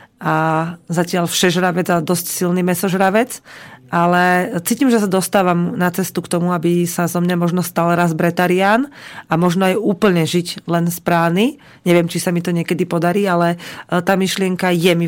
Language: Slovak